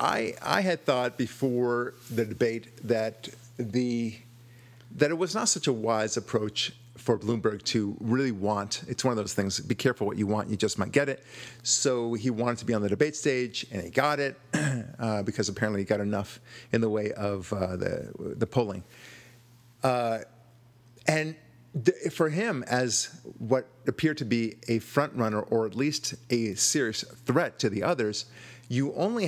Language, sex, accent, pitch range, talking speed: English, male, American, 110-130 Hz, 180 wpm